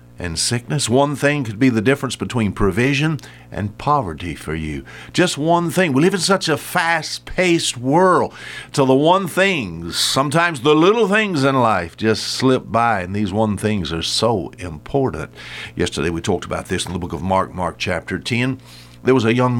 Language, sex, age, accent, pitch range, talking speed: English, male, 60-79, American, 90-135 Hz, 190 wpm